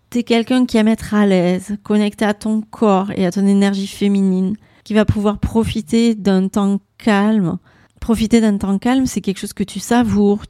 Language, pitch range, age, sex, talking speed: French, 190-225 Hz, 30-49, female, 190 wpm